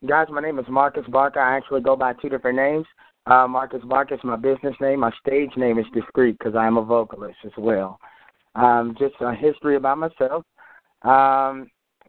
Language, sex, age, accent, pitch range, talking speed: English, male, 20-39, American, 115-135 Hz, 190 wpm